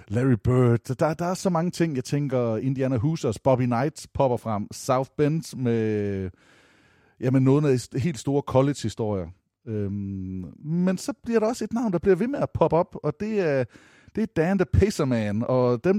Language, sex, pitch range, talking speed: Danish, male, 115-165 Hz, 190 wpm